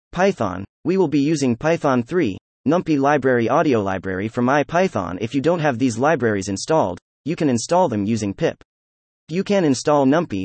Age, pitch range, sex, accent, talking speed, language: 30-49, 105-160 Hz, male, American, 170 wpm, English